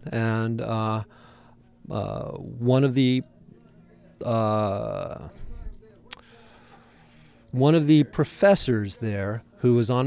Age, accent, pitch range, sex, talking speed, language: 40-59, American, 110-125 Hz, male, 90 wpm, English